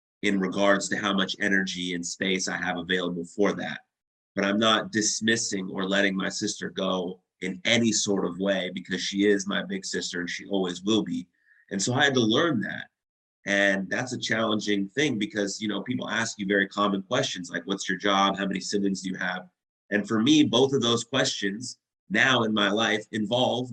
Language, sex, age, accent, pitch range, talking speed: English, male, 30-49, American, 95-110 Hz, 205 wpm